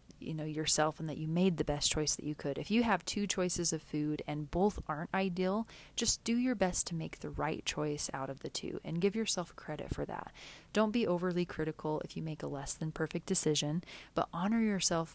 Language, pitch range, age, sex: English, 155-185 Hz, 30-49, female